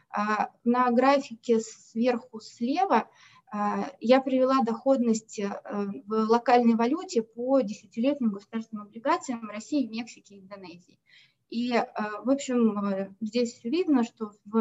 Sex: female